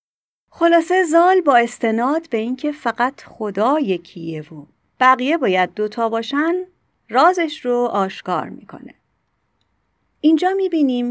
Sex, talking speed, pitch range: female, 110 wpm, 205-290 Hz